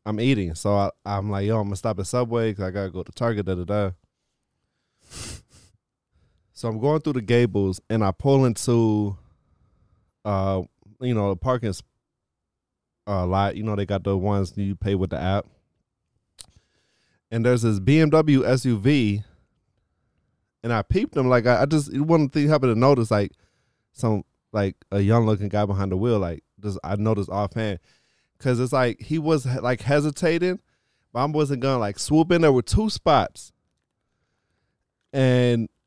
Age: 20-39